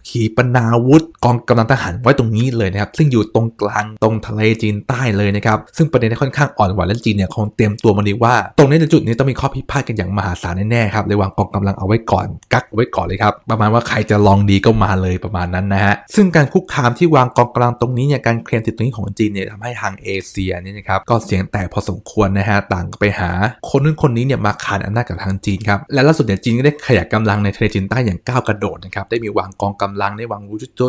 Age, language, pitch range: 20-39, English, 100-120 Hz